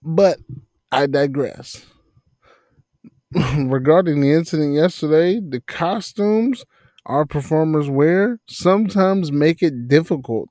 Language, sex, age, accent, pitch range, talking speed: English, male, 30-49, American, 120-165 Hz, 90 wpm